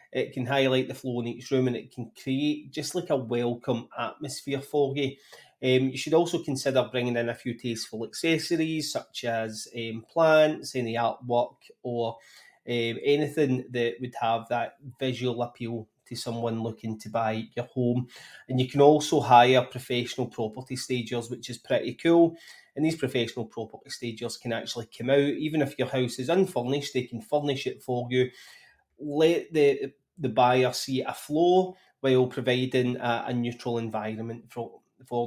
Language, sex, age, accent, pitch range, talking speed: English, male, 30-49, British, 120-140 Hz, 165 wpm